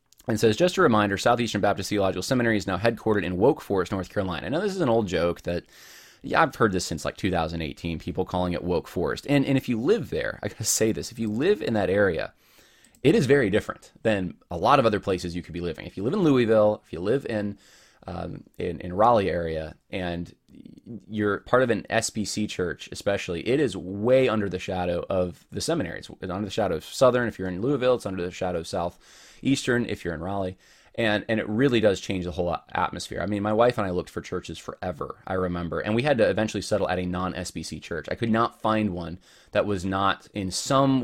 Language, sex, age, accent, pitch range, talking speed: English, male, 20-39, American, 90-115 Hz, 235 wpm